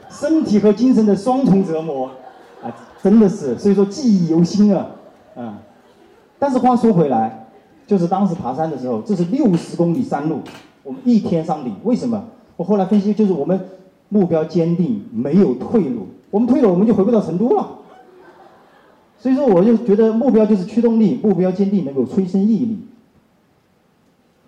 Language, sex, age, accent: Chinese, male, 30-49, native